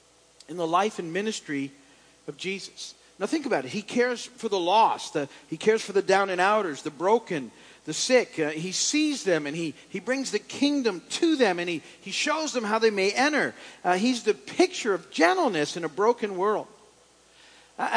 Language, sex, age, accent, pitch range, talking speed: English, male, 50-69, American, 160-240 Hz, 195 wpm